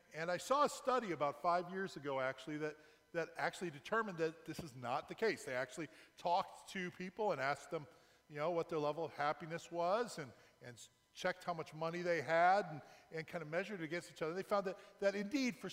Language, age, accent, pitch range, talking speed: English, 40-59, American, 160-200 Hz, 225 wpm